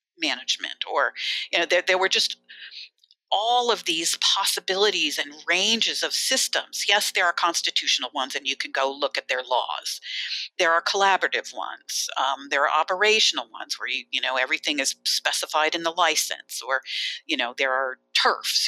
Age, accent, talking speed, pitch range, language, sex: 50-69, American, 175 wpm, 135-225 Hz, English, female